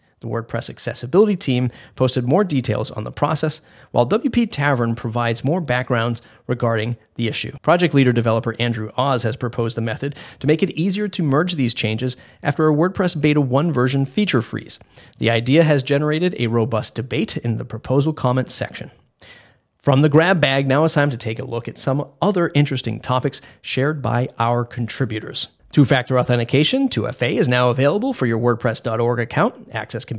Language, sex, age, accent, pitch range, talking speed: English, male, 30-49, American, 120-155 Hz, 175 wpm